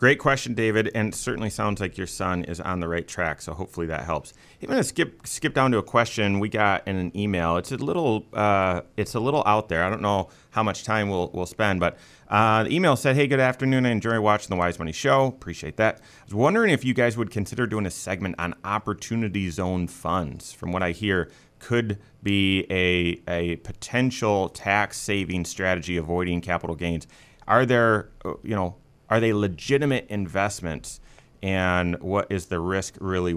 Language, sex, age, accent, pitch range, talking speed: English, male, 30-49, American, 90-120 Hz, 205 wpm